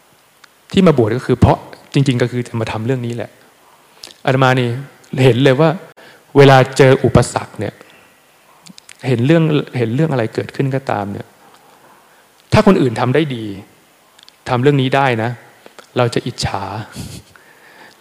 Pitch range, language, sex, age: 120-155 Hz, Thai, male, 20-39